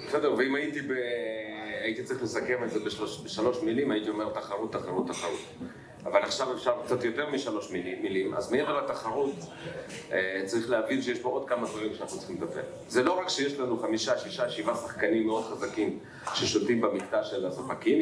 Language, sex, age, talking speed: Hebrew, male, 40-59, 175 wpm